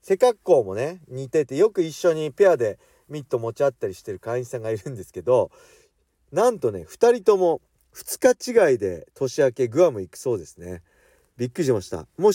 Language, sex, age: Japanese, male, 40-59